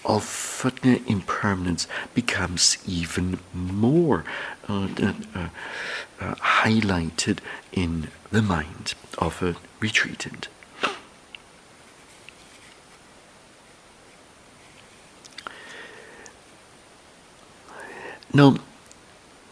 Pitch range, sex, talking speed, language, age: 95-130 Hz, male, 55 wpm, English, 60-79